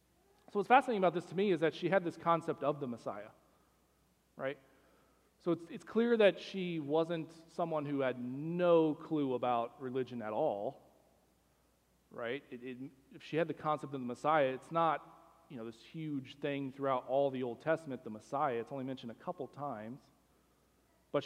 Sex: male